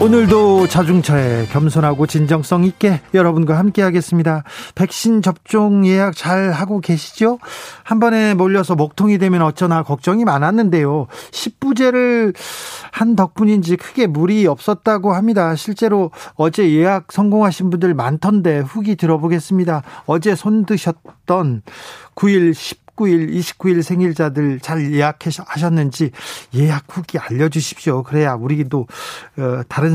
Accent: native